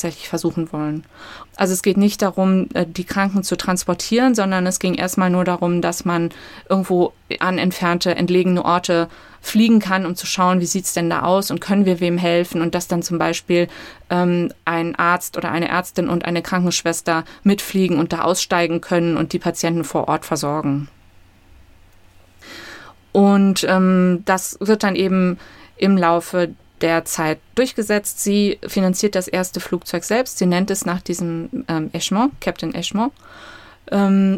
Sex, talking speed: female, 160 wpm